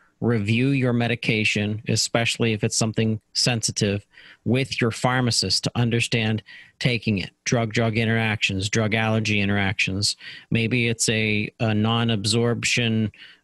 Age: 40-59